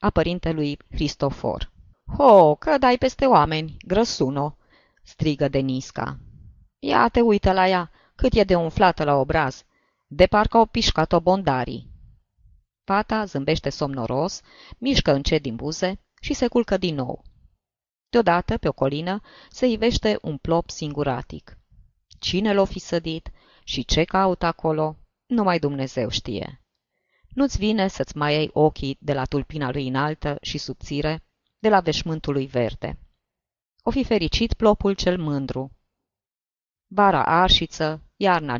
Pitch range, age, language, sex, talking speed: 145-190 Hz, 20-39, Romanian, female, 130 wpm